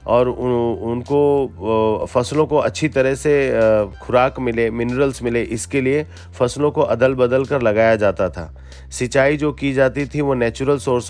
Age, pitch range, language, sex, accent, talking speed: 40-59, 110-140 Hz, Hindi, male, native, 155 wpm